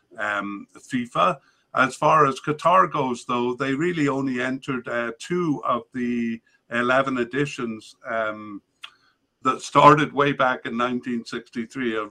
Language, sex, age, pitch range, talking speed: English, male, 50-69, 115-135 Hz, 125 wpm